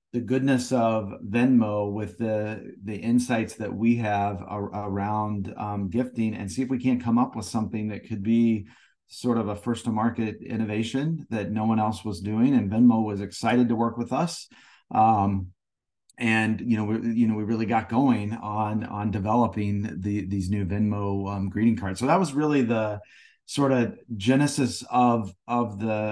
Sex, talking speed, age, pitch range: male, 185 wpm, 30-49, 105-120 Hz